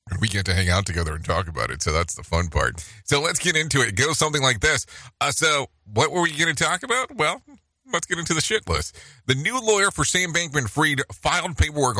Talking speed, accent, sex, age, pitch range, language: 250 wpm, American, male, 30-49, 95-130 Hz, English